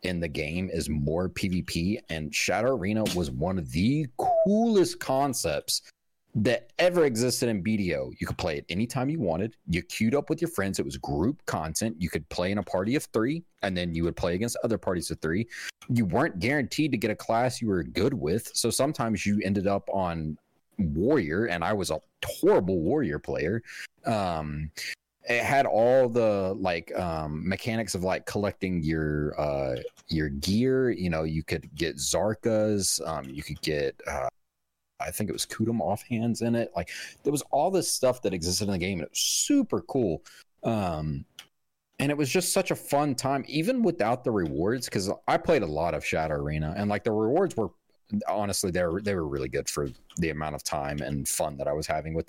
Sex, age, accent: male, 40-59, American